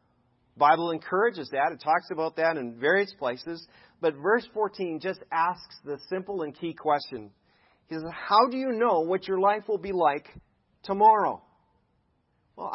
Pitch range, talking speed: 125-165 Hz, 160 wpm